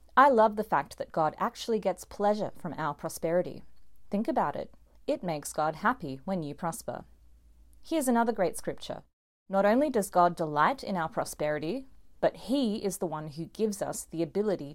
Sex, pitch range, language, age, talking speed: female, 160-210 Hz, English, 30-49, 180 wpm